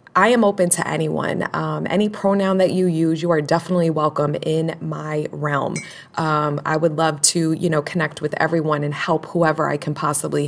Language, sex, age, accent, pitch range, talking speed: English, female, 20-39, American, 165-210 Hz, 195 wpm